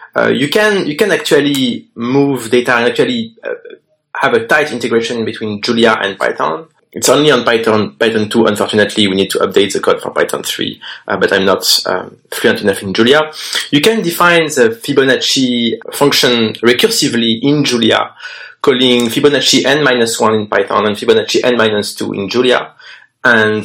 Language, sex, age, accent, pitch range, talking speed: English, male, 30-49, French, 110-185 Hz, 160 wpm